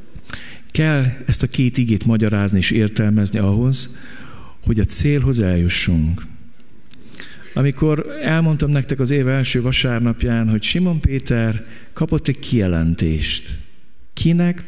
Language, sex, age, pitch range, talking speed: Hungarian, male, 50-69, 90-120 Hz, 110 wpm